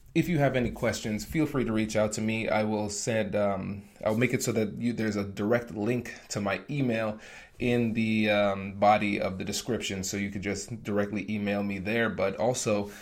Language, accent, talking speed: English, American, 210 wpm